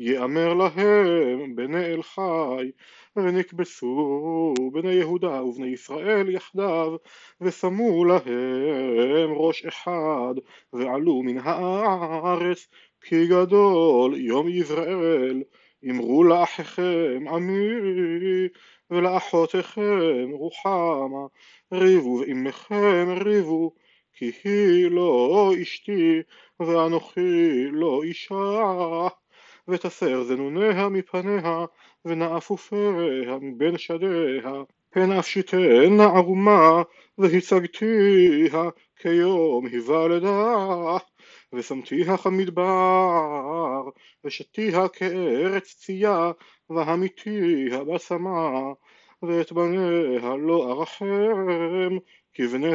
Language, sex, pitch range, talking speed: Hebrew, male, 160-190 Hz, 75 wpm